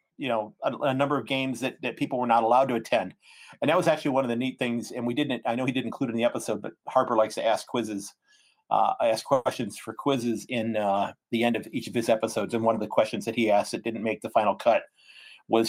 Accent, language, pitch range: American, English, 115-135 Hz